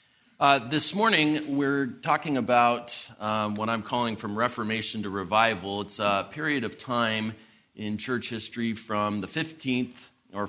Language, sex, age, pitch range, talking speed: English, male, 30-49, 105-125 Hz, 150 wpm